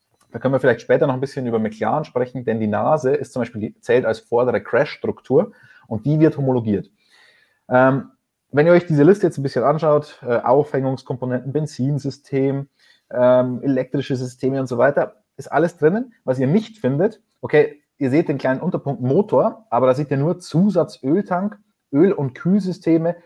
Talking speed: 175 wpm